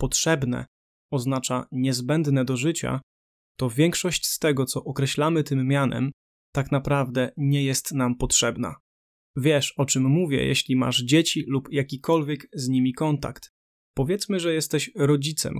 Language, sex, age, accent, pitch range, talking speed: Polish, male, 20-39, native, 130-150 Hz, 135 wpm